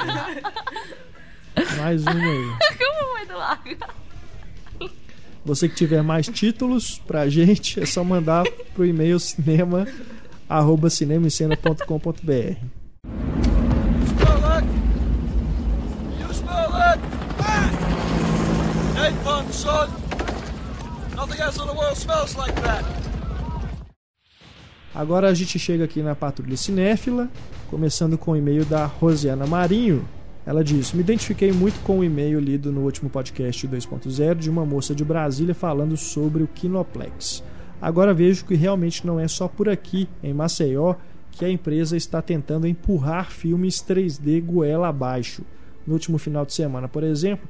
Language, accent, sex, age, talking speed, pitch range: Portuguese, Brazilian, male, 20-39, 105 wpm, 145-185 Hz